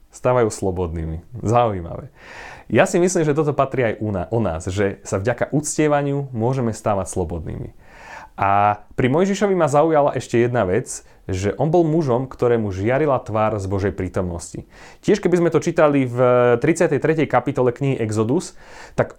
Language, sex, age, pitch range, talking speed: Slovak, male, 30-49, 100-135 Hz, 150 wpm